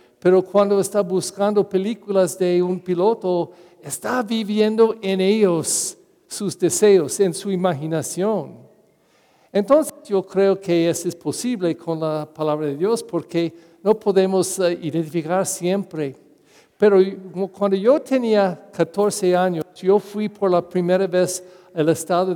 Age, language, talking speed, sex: 50-69, English, 130 wpm, male